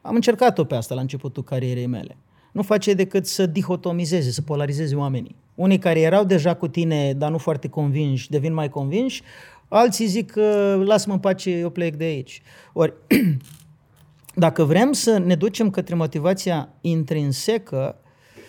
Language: Romanian